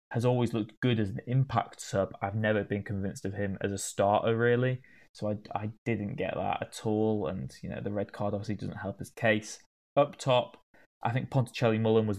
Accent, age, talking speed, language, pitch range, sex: British, 10-29, 210 wpm, English, 100-115 Hz, male